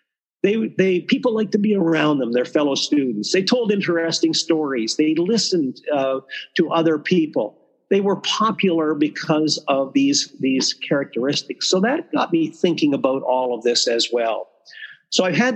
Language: English